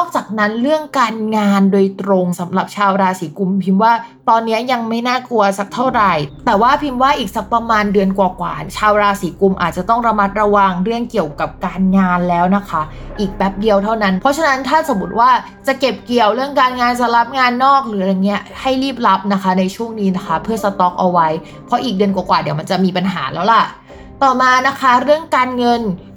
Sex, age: female, 20-39